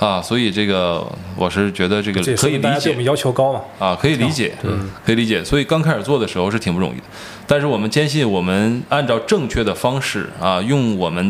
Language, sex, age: Chinese, male, 20-39